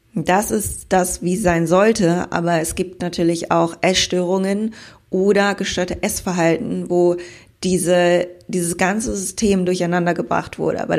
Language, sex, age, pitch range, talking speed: German, female, 20-39, 170-185 Hz, 130 wpm